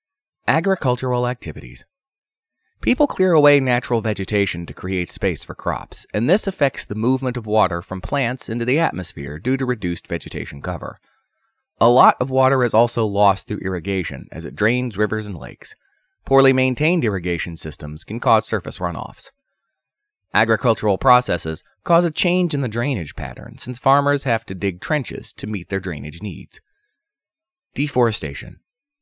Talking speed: 150 wpm